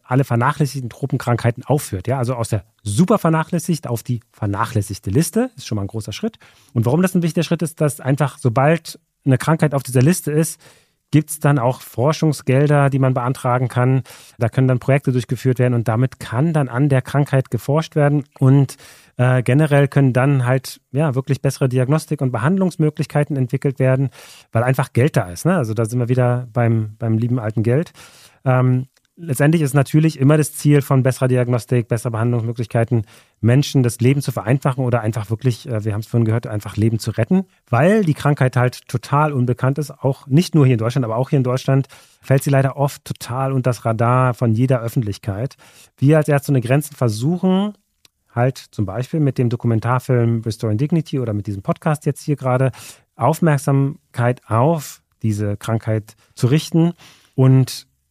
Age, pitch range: 30-49, 120-145 Hz